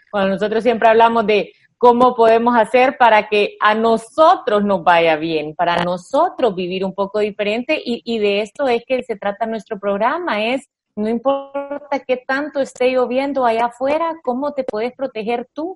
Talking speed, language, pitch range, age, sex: 170 wpm, Spanish, 195-255 Hz, 30-49, female